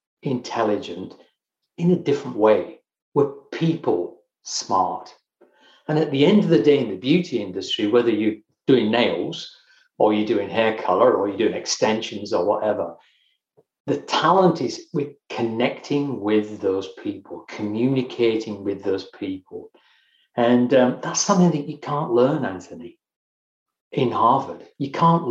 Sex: male